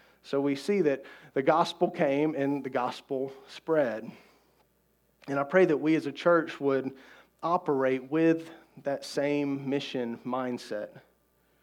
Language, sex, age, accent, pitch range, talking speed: English, male, 40-59, American, 135-165 Hz, 135 wpm